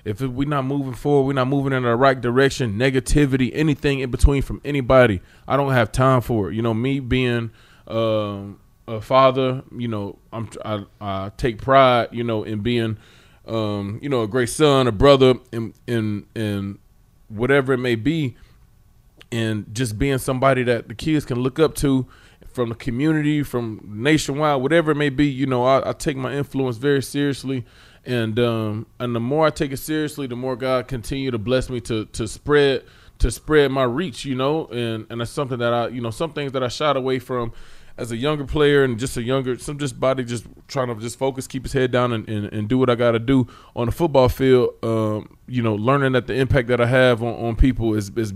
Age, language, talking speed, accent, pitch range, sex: 20-39, English, 215 wpm, American, 110-135 Hz, male